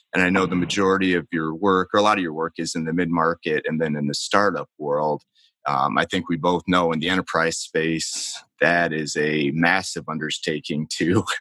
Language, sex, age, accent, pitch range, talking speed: English, male, 30-49, American, 80-95 Hz, 215 wpm